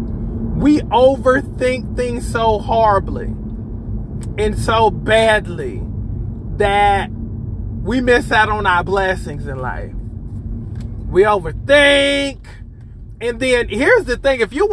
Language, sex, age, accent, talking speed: English, male, 20-39, American, 105 wpm